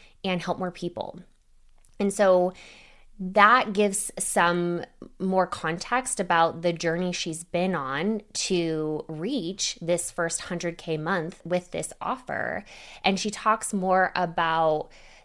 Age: 20-39